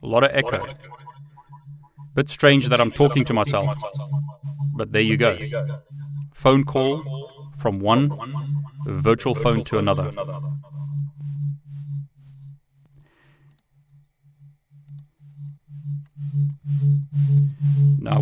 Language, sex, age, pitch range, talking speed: English, male, 30-49, 105-145 Hz, 80 wpm